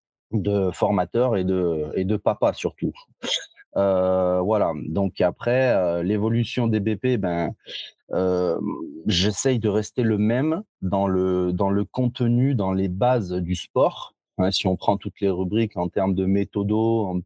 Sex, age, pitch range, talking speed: male, 30-49, 95-115 Hz, 155 wpm